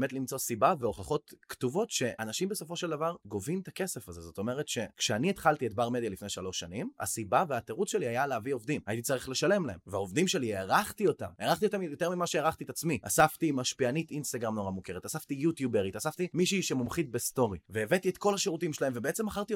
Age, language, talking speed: 20-39, Hebrew, 190 wpm